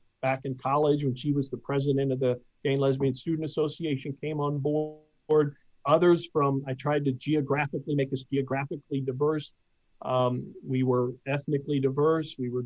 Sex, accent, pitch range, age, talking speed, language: male, American, 135-160 Hz, 50-69, 160 wpm, English